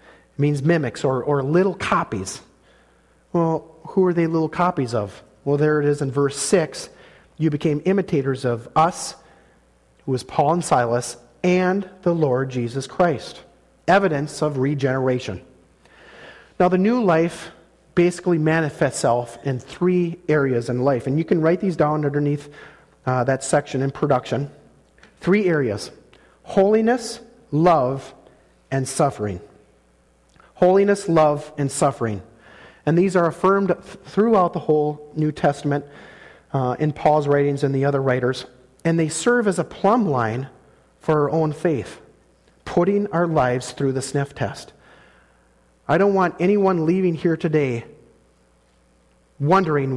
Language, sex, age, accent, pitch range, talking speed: English, male, 40-59, American, 120-165 Hz, 140 wpm